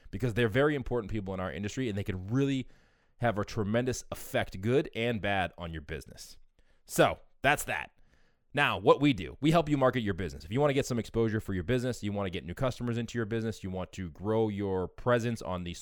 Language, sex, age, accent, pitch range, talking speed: English, male, 20-39, American, 100-130 Hz, 235 wpm